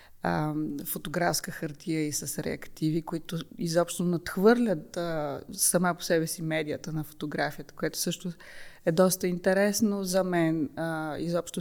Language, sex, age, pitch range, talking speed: Bulgarian, female, 20-39, 165-190 Hz, 130 wpm